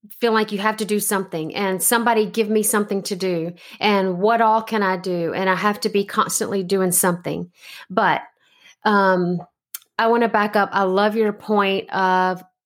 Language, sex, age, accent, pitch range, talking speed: English, female, 30-49, American, 185-220 Hz, 190 wpm